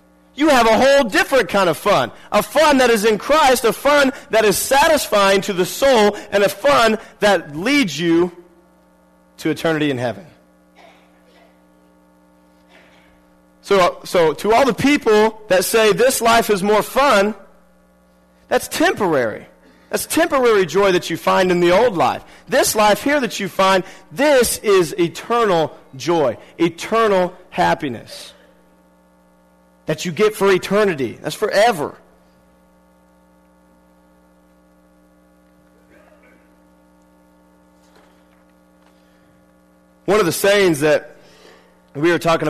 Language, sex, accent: English, male, American